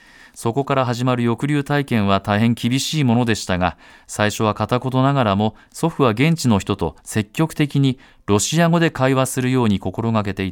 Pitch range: 105-135 Hz